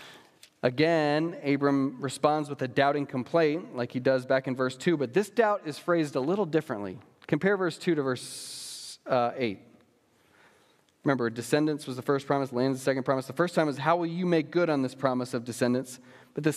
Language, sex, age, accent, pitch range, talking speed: English, male, 30-49, American, 120-155 Hz, 205 wpm